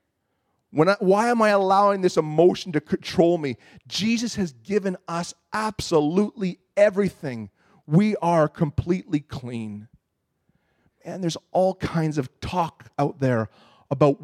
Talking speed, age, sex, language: 120 wpm, 40-59, male, English